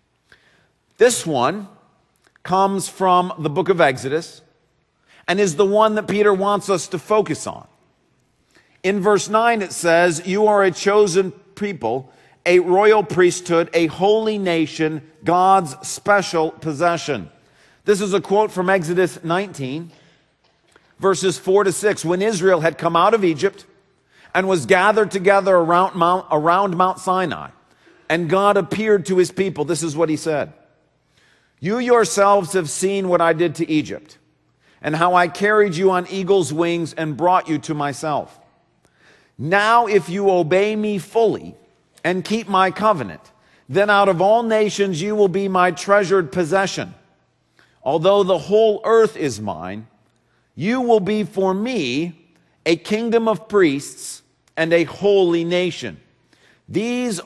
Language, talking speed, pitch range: English, 145 wpm, 160-200 Hz